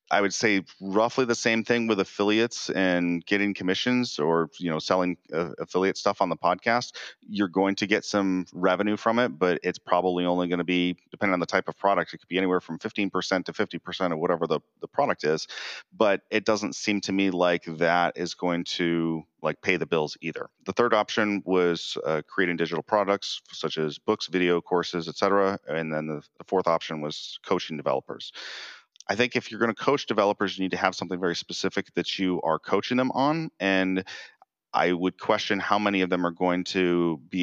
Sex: male